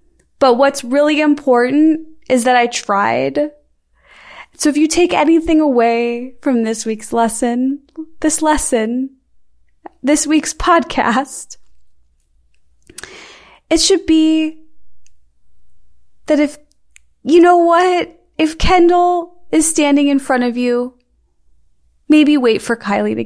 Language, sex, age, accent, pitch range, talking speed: English, female, 20-39, American, 215-295 Hz, 115 wpm